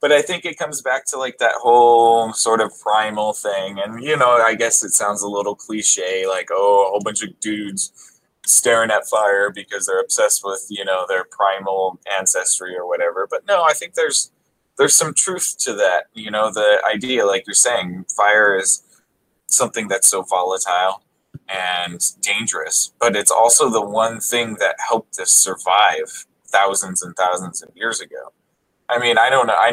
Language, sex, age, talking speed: English, male, 20-39, 185 wpm